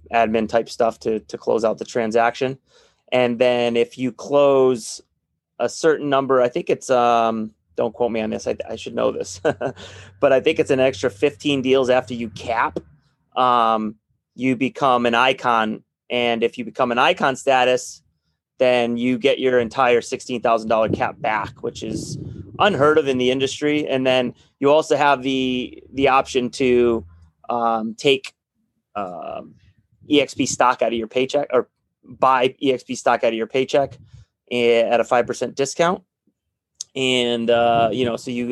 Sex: male